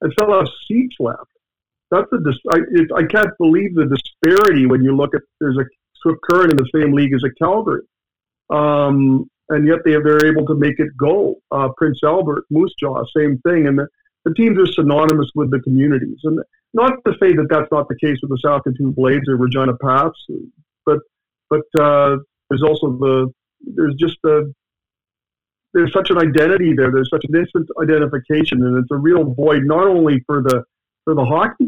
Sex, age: male, 50-69